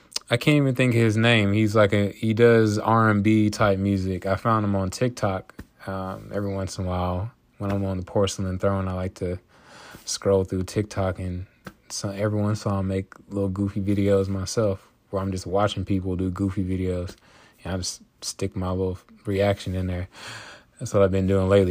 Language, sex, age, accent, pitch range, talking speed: English, male, 20-39, American, 95-115 Hz, 205 wpm